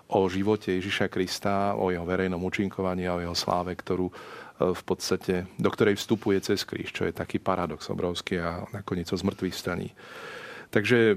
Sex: male